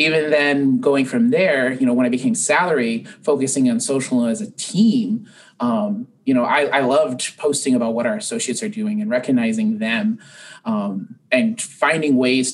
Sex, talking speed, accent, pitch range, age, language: male, 175 wpm, American, 145-230 Hz, 30-49, English